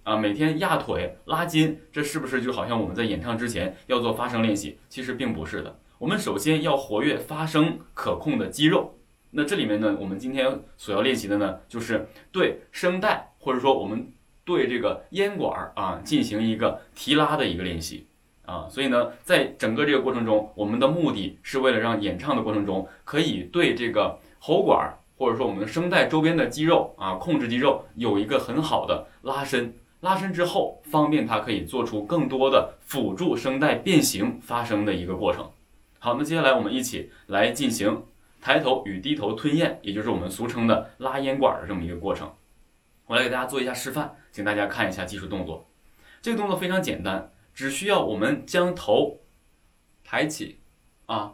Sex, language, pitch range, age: male, Chinese, 105-155 Hz, 20-39